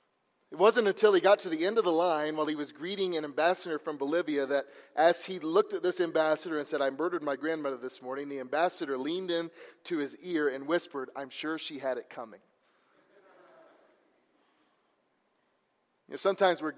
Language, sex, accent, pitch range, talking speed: English, male, American, 145-200 Hz, 190 wpm